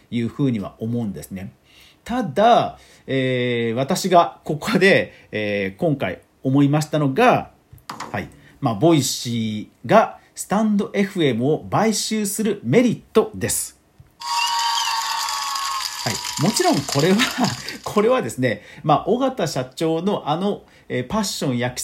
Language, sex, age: Japanese, male, 40-59